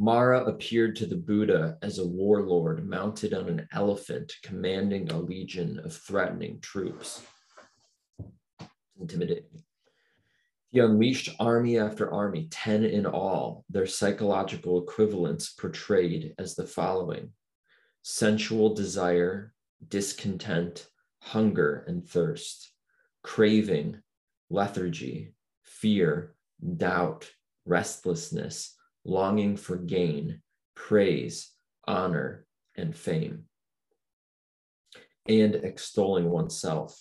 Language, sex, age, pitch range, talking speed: English, male, 20-39, 90-115 Hz, 90 wpm